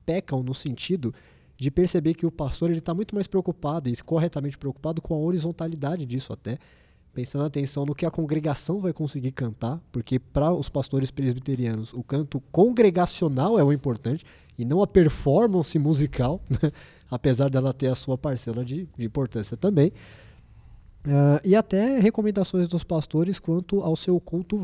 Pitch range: 125-170 Hz